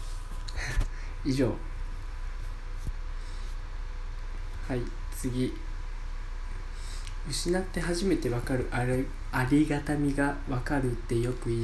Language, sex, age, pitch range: Japanese, male, 20-39, 100-140 Hz